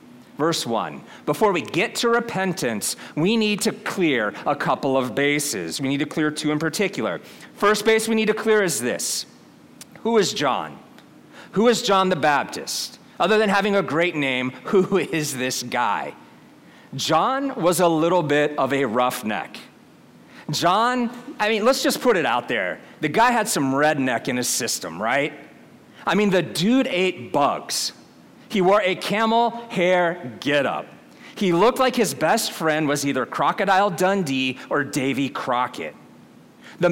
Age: 40-59